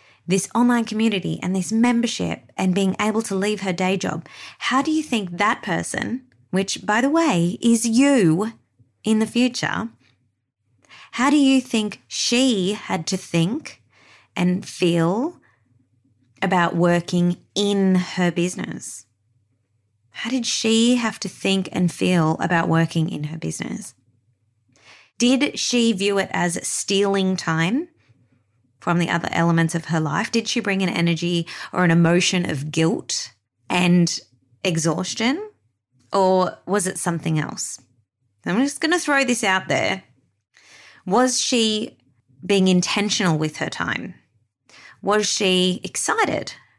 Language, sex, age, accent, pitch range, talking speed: English, female, 20-39, Australian, 145-210 Hz, 135 wpm